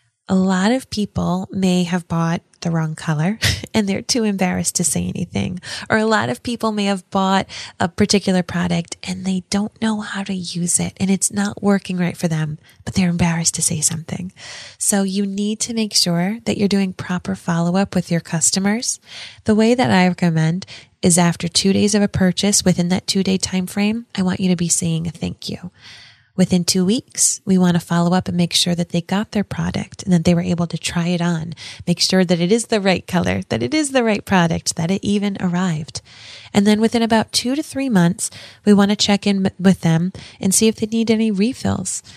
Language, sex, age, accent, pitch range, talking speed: English, female, 20-39, American, 175-205 Hz, 220 wpm